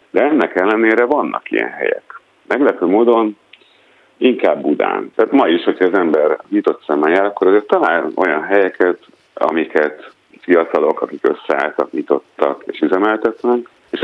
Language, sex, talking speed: Hungarian, male, 135 wpm